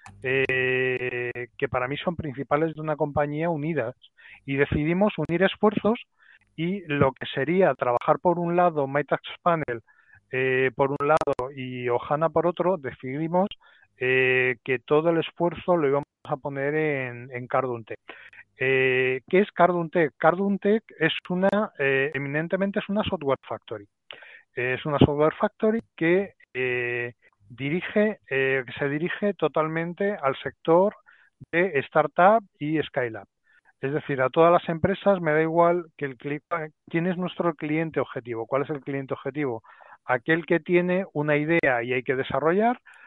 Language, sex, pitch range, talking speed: Spanish, male, 135-170 Hz, 140 wpm